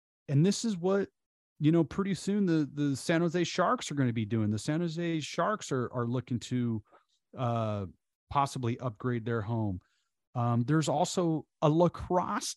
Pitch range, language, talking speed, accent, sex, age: 110-155 Hz, English, 170 wpm, American, male, 30-49